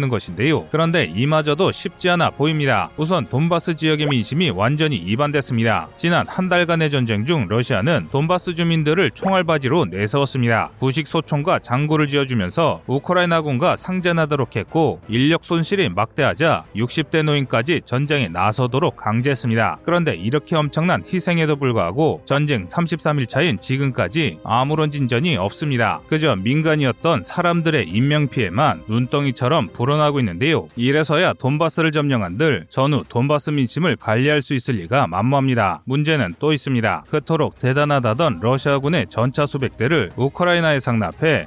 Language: Korean